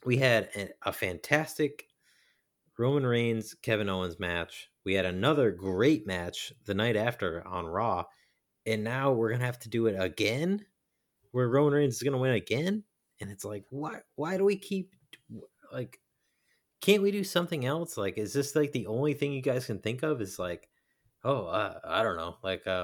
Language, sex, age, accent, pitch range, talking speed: English, male, 30-49, American, 100-145 Hz, 190 wpm